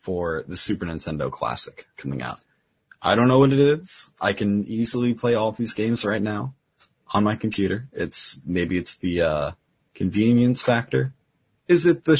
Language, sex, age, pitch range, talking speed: English, male, 30-49, 90-125 Hz, 175 wpm